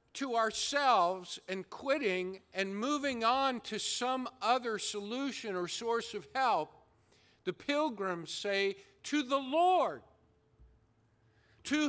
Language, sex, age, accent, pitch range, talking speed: English, male, 50-69, American, 155-245 Hz, 110 wpm